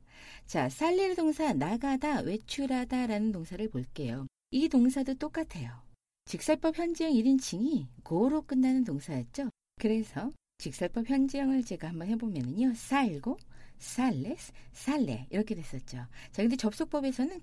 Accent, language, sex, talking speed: Korean, English, female, 105 wpm